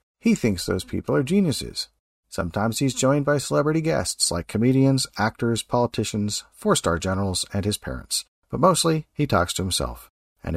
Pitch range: 95-135 Hz